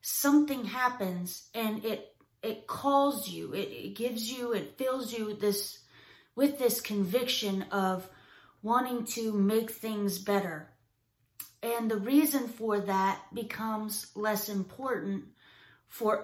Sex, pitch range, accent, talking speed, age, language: female, 190-230 Hz, American, 120 wpm, 30-49, English